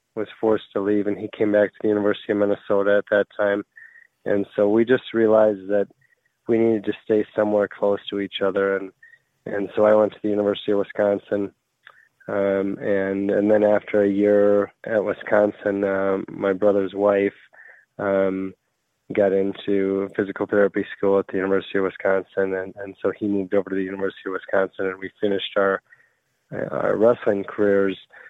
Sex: male